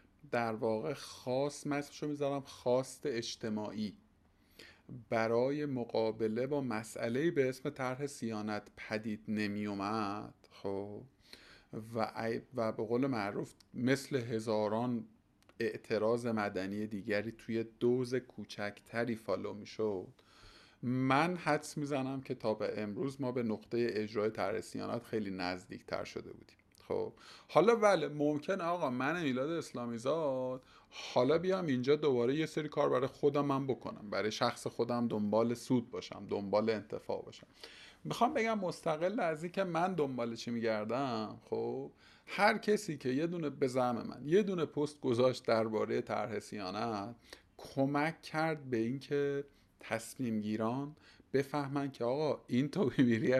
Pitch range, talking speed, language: 110-145 Hz, 130 wpm, Persian